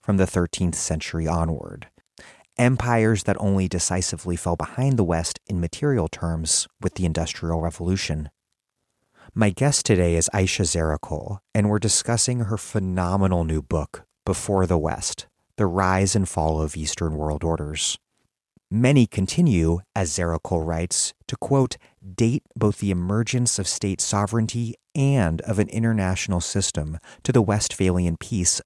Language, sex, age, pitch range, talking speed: English, male, 30-49, 85-115 Hz, 140 wpm